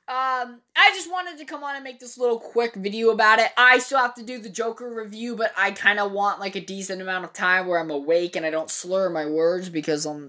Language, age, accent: English, 20-39, American